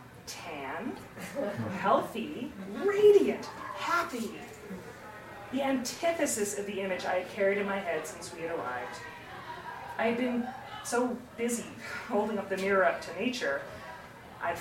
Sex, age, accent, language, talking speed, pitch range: female, 30-49, American, English, 130 wpm, 190-235 Hz